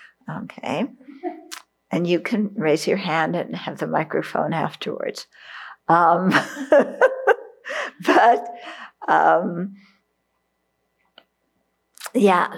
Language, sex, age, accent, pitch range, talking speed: English, female, 60-79, American, 175-250 Hz, 75 wpm